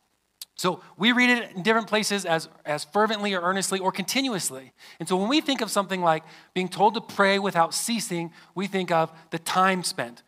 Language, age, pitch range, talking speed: English, 30-49, 160-205 Hz, 200 wpm